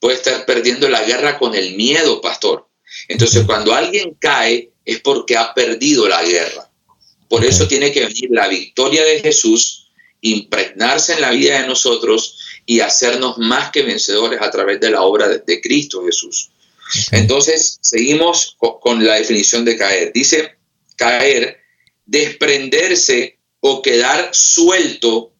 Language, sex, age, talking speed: Spanish, male, 40-59, 145 wpm